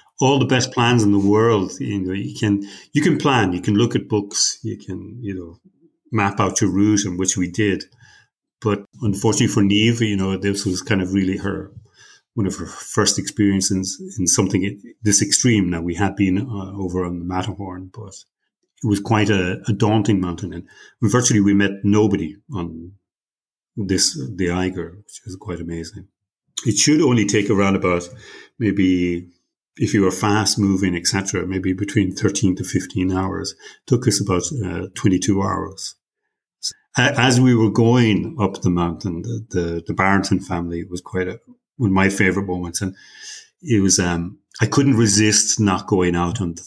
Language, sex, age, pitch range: English, male, 40-59, 90-105 Hz